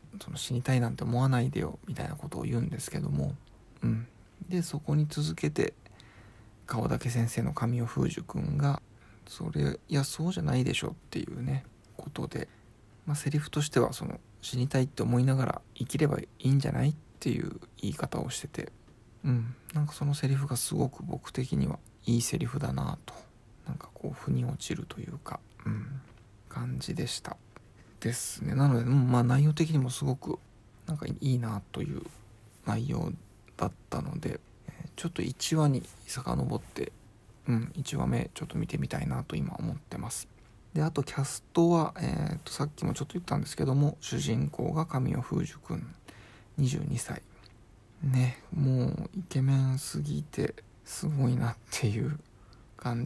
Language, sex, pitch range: Japanese, male, 115-145 Hz